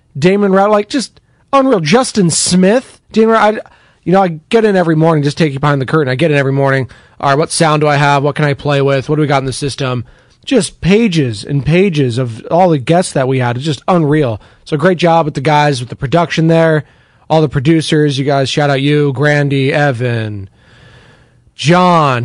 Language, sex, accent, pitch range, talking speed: English, male, American, 130-170 Hz, 220 wpm